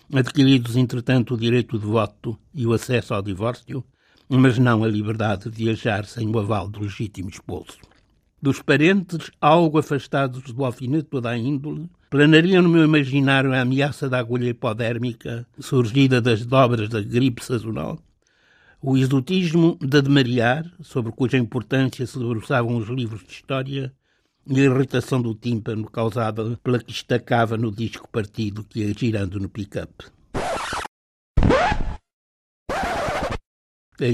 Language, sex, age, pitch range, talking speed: Portuguese, male, 60-79, 110-135 Hz, 135 wpm